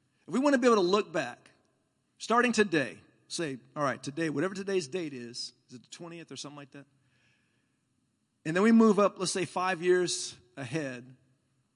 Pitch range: 155-225 Hz